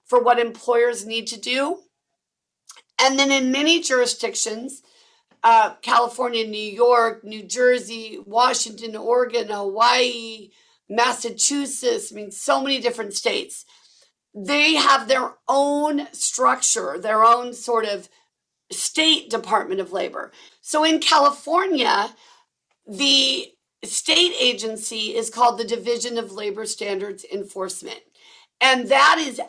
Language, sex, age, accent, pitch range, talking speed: English, female, 40-59, American, 210-280 Hz, 115 wpm